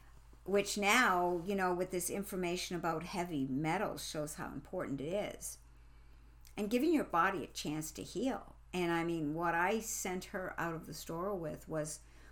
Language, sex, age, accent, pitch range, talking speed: English, female, 60-79, American, 150-190 Hz, 175 wpm